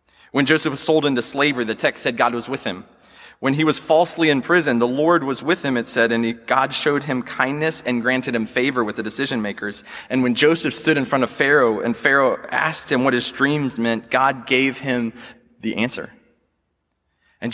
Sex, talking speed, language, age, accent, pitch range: male, 210 wpm, English, 20-39, American, 110-145 Hz